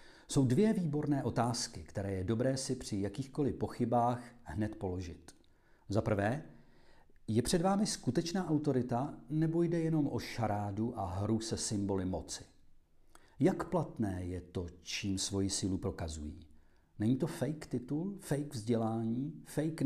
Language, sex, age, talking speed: Czech, male, 40-59, 135 wpm